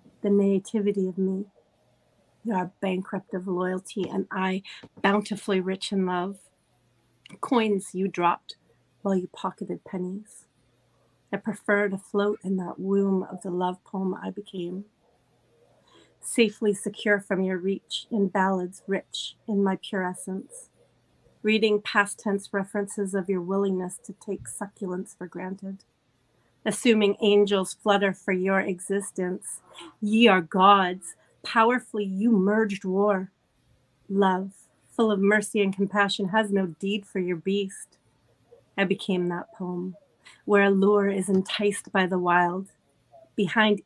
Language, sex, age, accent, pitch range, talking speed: English, female, 40-59, American, 185-205 Hz, 130 wpm